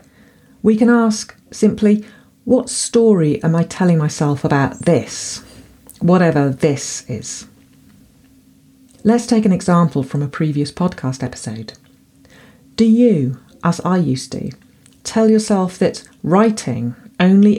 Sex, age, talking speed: female, 40-59, 120 wpm